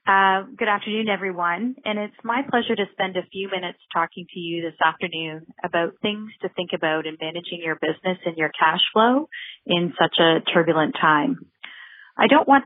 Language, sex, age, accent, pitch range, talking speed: English, female, 30-49, American, 170-215 Hz, 185 wpm